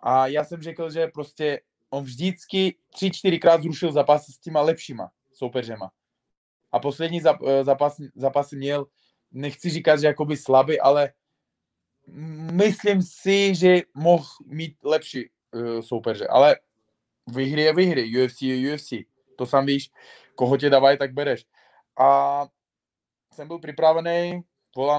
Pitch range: 135-165 Hz